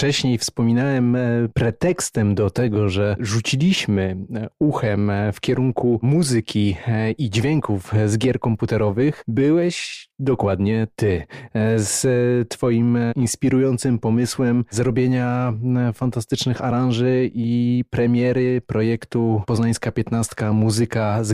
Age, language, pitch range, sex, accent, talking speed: 30-49, Polish, 115-135 Hz, male, native, 95 wpm